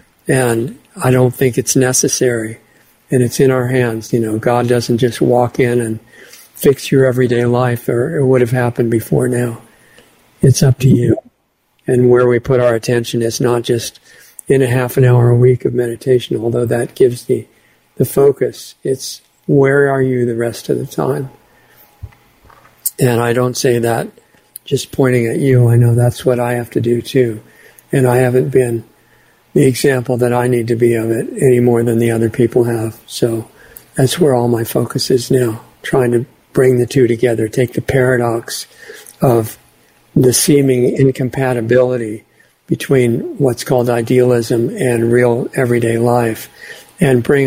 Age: 50-69